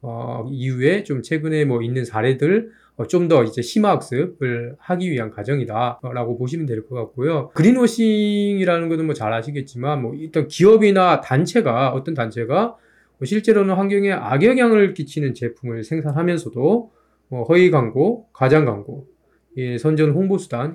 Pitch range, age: 125-190 Hz, 20-39